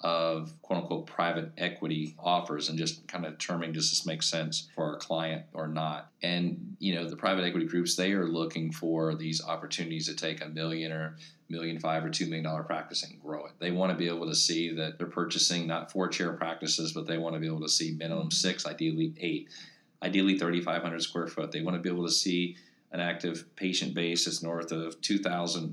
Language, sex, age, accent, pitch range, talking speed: English, male, 40-59, American, 80-90 Hz, 215 wpm